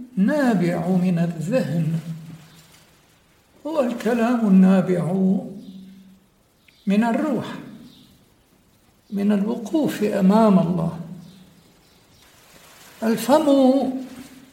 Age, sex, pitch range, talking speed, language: 60-79, male, 185-225 Hz, 55 wpm, English